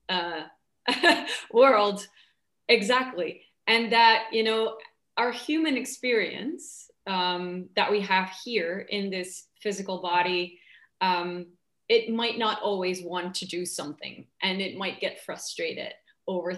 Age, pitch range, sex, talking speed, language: 30-49, 190-255 Hz, female, 125 wpm, English